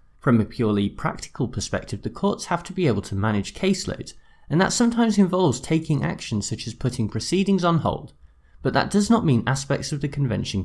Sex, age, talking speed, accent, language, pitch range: male, 20-39, 195 wpm, British, English, 105-165 Hz